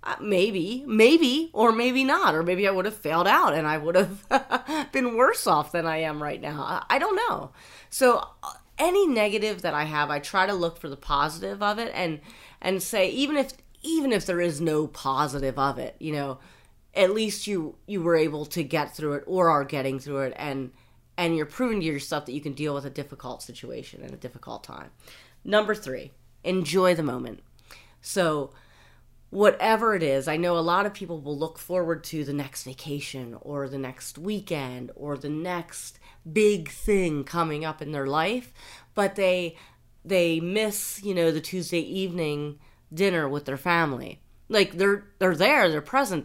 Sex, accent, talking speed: female, American, 190 wpm